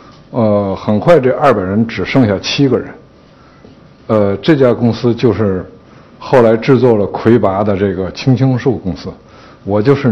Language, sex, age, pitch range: Chinese, male, 60-79, 105-140 Hz